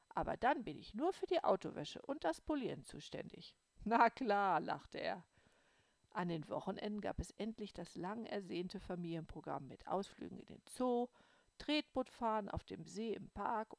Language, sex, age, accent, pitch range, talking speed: German, female, 50-69, German, 175-240 Hz, 160 wpm